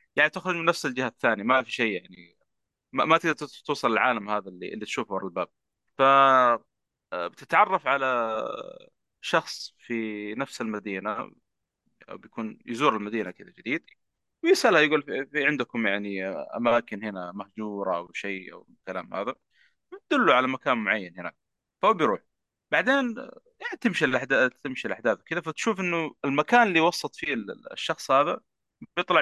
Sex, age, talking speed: male, 30-49, 140 wpm